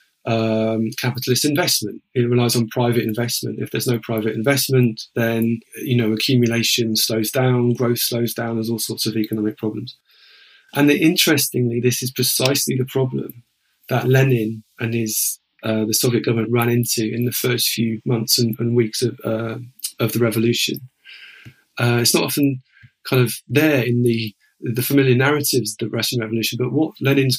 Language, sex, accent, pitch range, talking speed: English, male, British, 115-130 Hz, 170 wpm